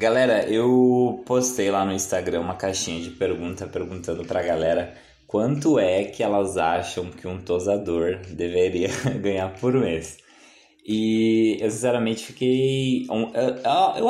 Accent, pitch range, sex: Brazilian, 90-125 Hz, male